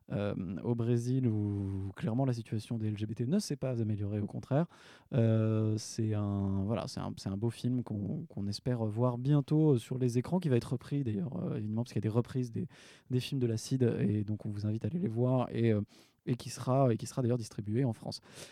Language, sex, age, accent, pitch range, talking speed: French, male, 20-39, French, 110-145 Hz, 225 wpm